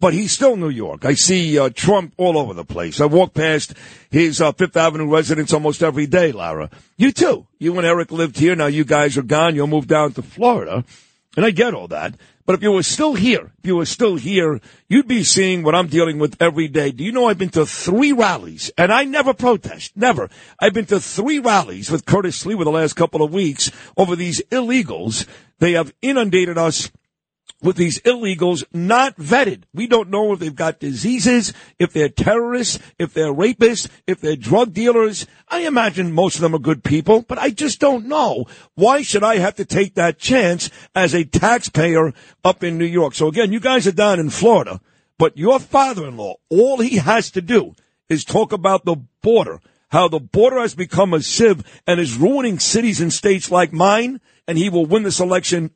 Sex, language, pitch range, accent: male, English, 160-215 Hz, American